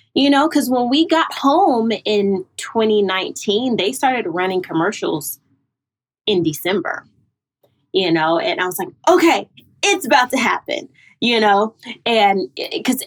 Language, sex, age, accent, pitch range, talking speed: English, female, 20-39, American, 175-270 Hz, 140 wpm